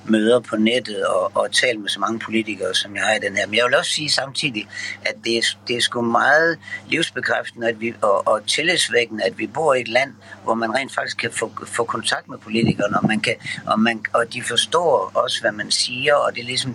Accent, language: native, Danish